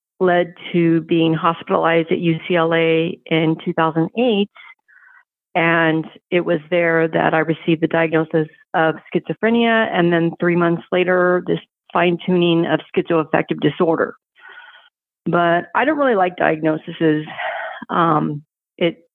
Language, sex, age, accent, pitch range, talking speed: English, female, 40-59, American, 165-195 Hz, 115 wpm